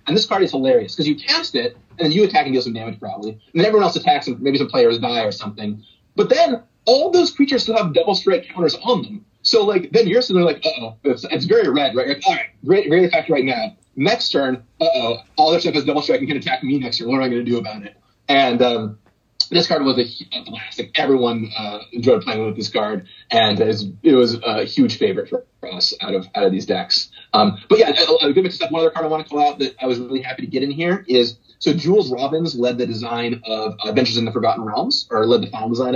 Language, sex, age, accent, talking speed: English, male, 30-49, American, 260 wpm